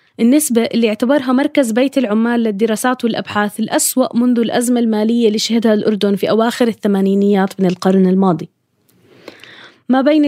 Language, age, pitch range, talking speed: Arabic, 20-39, 215-275 Hz, 135 wpm